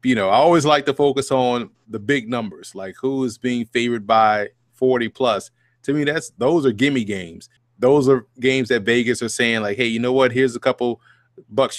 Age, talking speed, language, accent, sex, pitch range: 30-49, 215 wpm, English, American, male, 120-145 Hz